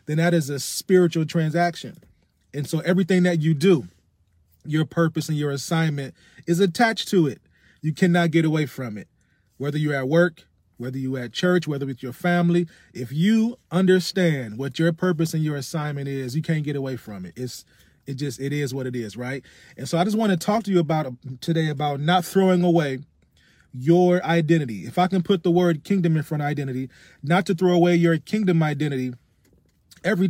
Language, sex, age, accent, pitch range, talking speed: English, male, 30-49, American, 135-175 Hz, 200 wpm